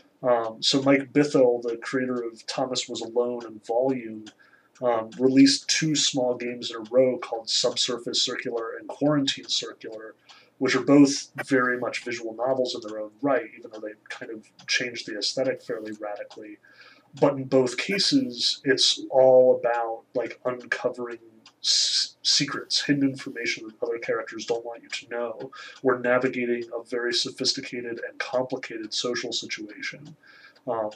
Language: English